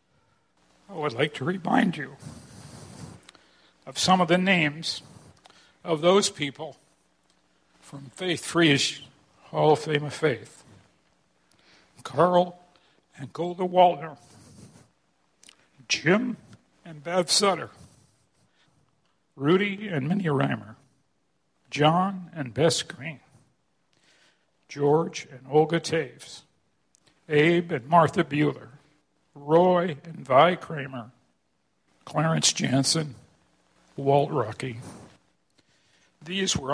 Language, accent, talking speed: English, American, 90 wpm